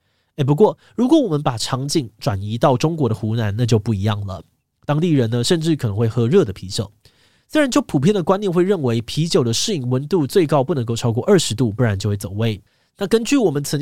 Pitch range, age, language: 115-155 Hz, 20-39, Chinese